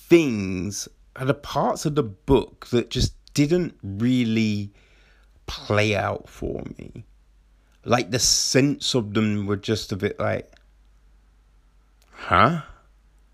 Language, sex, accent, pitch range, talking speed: English, male, British, 105-145 Hz, 115 wpm